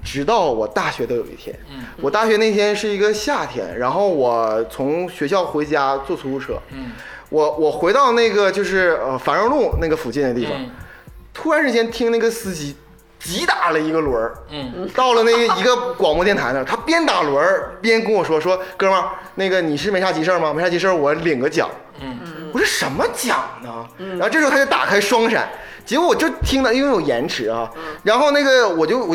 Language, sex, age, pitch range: Chinese, male, 20-39, 160-240 Hz